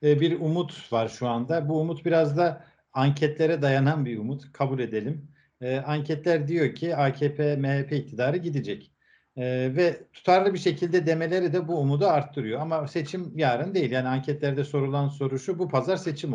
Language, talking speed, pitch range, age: Turkish, 165 wpm, 130-165 Hz, 50-69